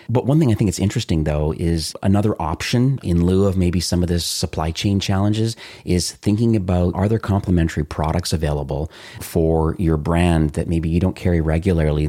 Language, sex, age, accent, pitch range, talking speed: English, male, 40-59, American, 80-100 Hz, 190 wpm